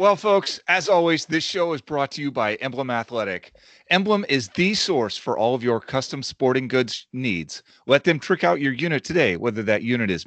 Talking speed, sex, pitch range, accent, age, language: 210 wpm, male, 110-155 Hz, American, 40-59, English